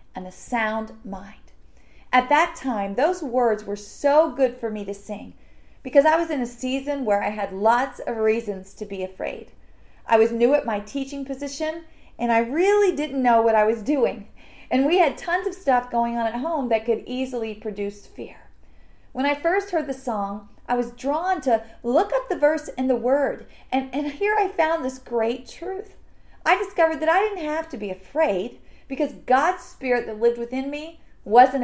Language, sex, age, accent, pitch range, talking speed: English, female, 40-59, American, 225-300 Hz, 195 wpm